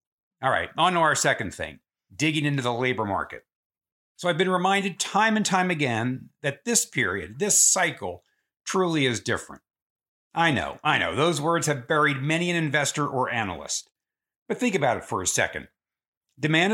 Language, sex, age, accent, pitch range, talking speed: English, male, 50-69, American, 130-170 Hz, 175 wpm